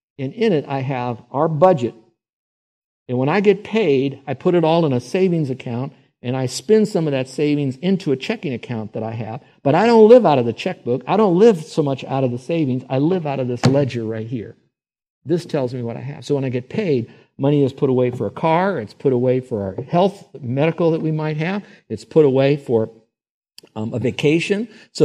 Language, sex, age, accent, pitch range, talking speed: English, male, 50-69, American, 120-160 Hz, 230 wpm